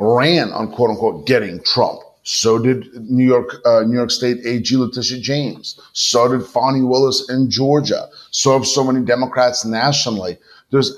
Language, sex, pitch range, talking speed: English, male, 120-145 Hz, 165 wpm